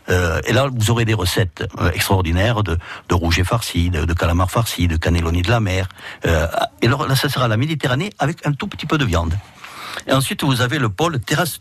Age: 60-79